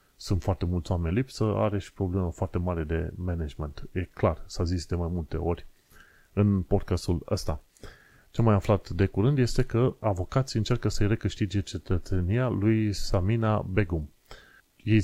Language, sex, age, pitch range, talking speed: Romanian, male, 30-49, 90-110 Hz, 155 wpm